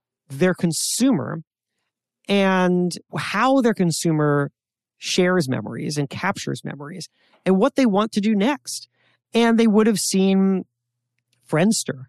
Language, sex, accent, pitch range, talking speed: English, male, American, 135-210 Hz, 120 wpm